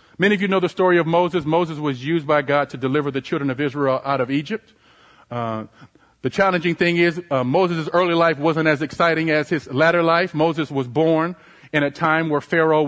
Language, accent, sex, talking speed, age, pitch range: English, American, male, 215 wpm, 40-59, 145-175 Hz